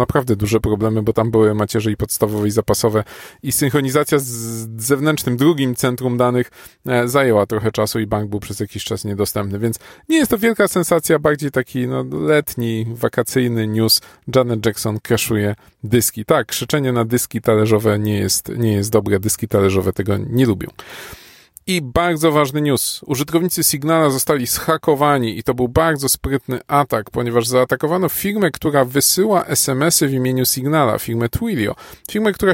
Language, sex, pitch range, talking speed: Polish, male, 115-155 Hz, 160 wpm